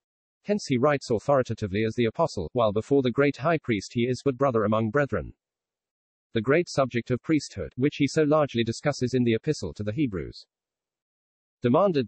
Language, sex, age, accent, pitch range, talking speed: English, male, 40-59, British, 110-140 Hz, 180 wpm